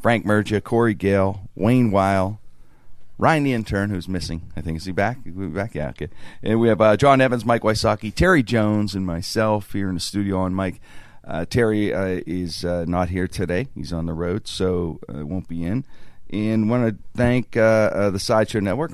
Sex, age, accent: male, 40-59, American